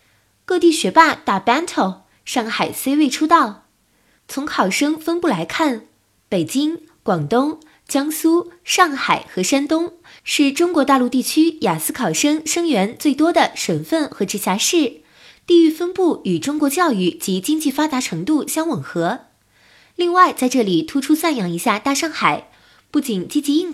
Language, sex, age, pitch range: Chinese, female, 20-39, 215-320 Hz